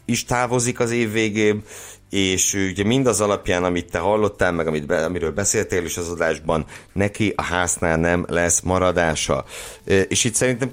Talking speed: 160 wpm